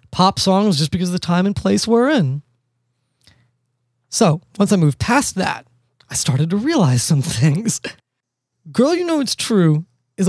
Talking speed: 170 wpm